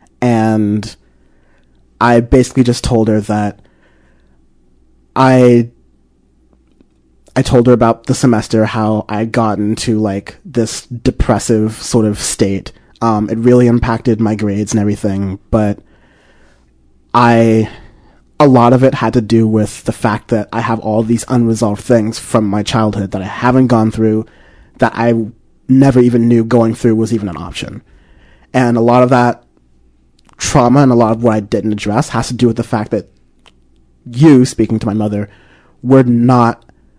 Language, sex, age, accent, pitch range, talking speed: English, male, 30-49, American, 100-120 Hz, 160 wpm